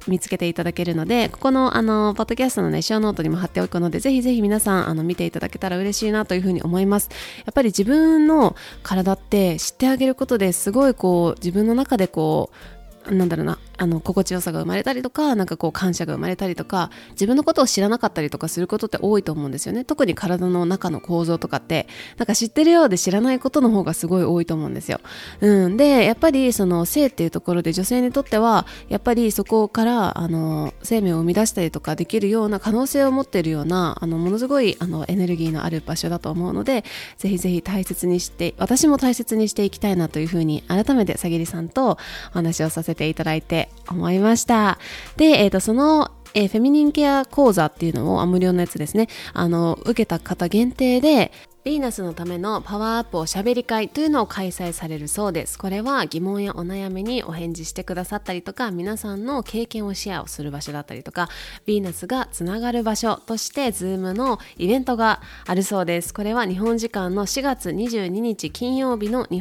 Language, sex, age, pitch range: Japanese, female, 20-39, 175-235 Hz